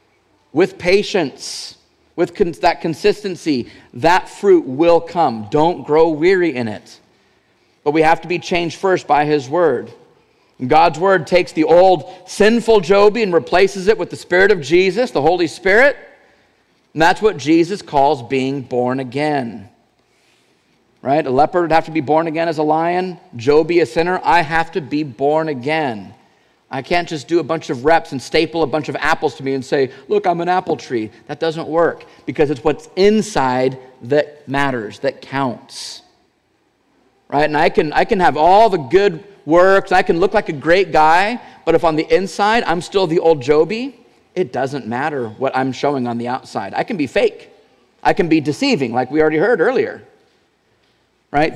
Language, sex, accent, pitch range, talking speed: English, male, American, 145-190 Hz, 180 wpm